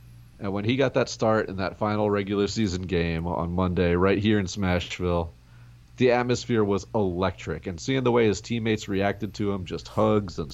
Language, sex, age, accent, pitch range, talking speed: English, male, 40-59, American, 85-120 Hz, 195 wpm